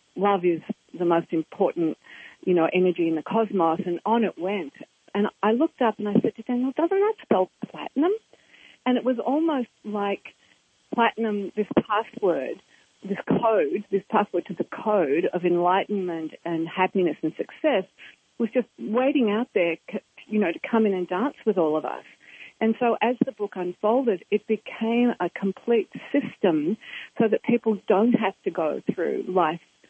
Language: English